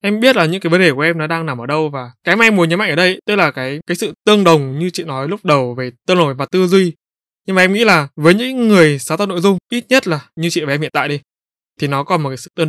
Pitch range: 140-180 Hz